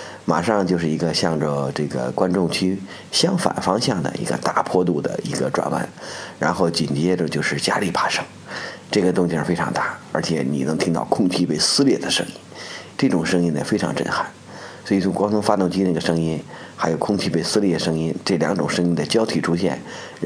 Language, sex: Chinese, male